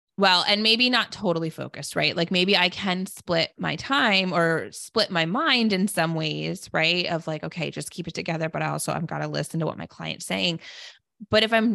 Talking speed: 220 wpm